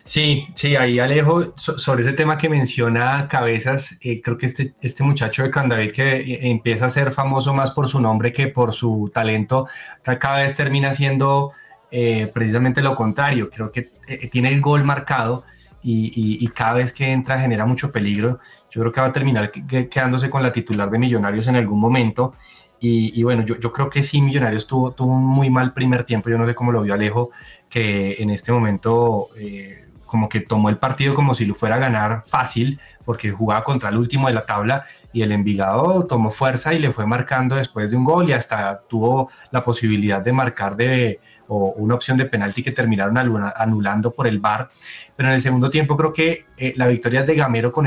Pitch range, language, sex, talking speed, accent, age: 115-135 Hz, Spanish, male, 205 wpm, Colombian, 20-39